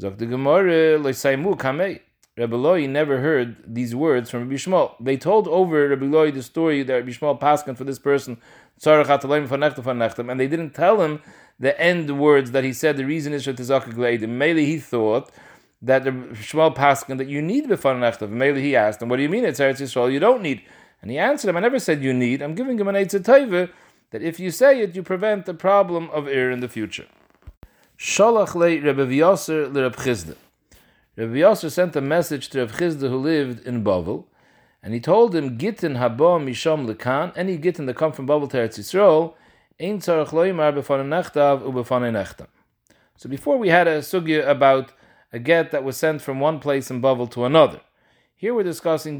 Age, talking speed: 30-49, 180 wpm